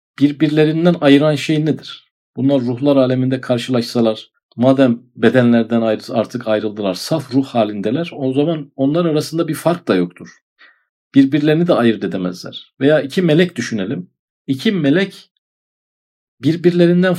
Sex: male